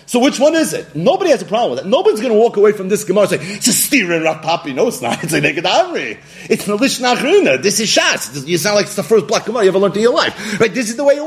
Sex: male